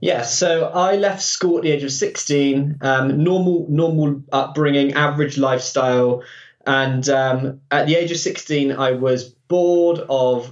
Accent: British